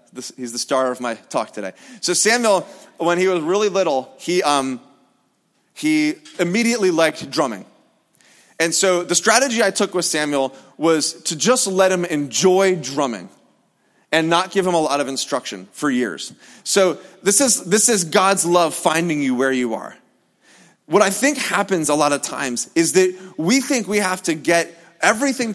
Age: 30-49